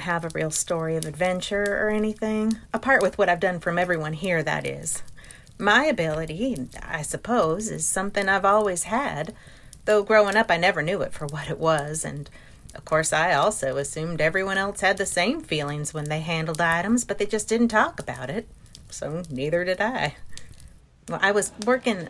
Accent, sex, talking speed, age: American, female, 185 wpm, 40-59